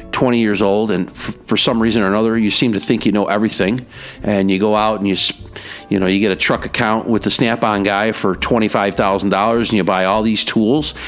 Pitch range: 95-115 Hz